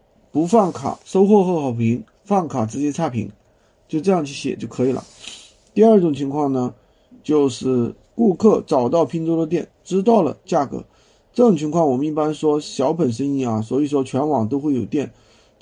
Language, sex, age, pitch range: Chinese, male, 50-69, 125-165 Hz